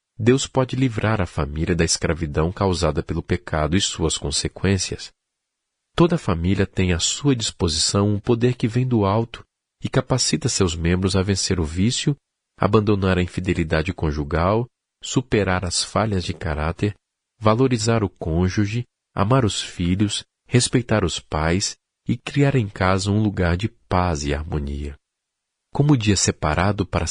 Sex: male